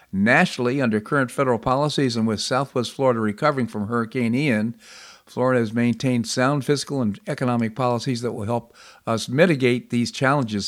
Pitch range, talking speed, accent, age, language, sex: 110-140 Hz, 155 wpm, American, 50-69, English, male